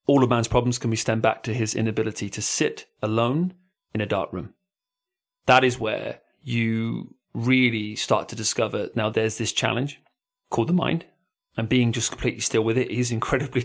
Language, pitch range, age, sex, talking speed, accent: English, 110-135 Hz, 30-49, male, 185 wpm, British